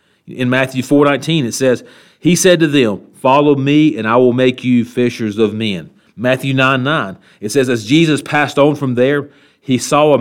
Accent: American